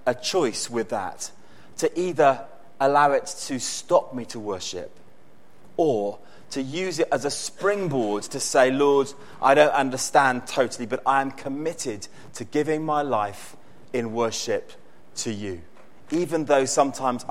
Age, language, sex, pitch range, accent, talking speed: 30-49, English, male, 120-155 Hz, British, 145 wpm